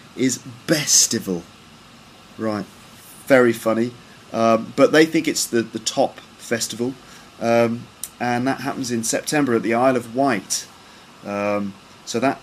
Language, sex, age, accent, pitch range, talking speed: English, male, 30-49, British, 100-125 Hz, 135 wpm